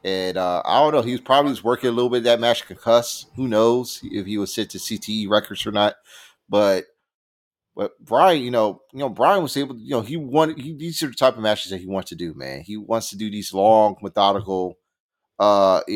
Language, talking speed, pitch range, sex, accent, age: English, 250 wpm, 95-125 Hz, male, American, 30-49